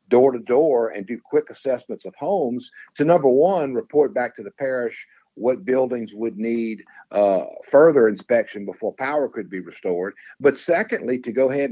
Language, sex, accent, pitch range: English, male, American, 105-130 Hz